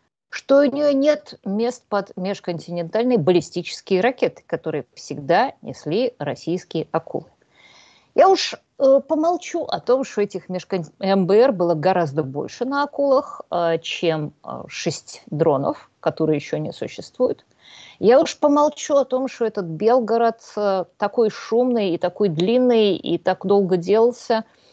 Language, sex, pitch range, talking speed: Russian, female, 165-235 Hz, 135 wpm